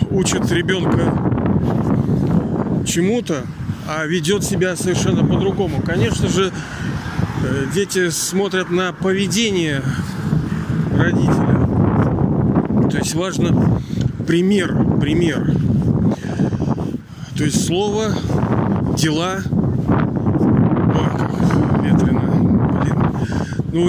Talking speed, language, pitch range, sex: 70 wpm, Russian, 135-175 Hz, male